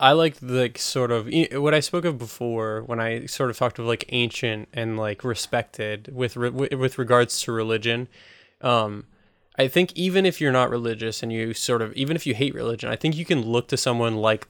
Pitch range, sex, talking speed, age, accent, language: 110-130 Hz, male, 210 wpm, 20-39, American, English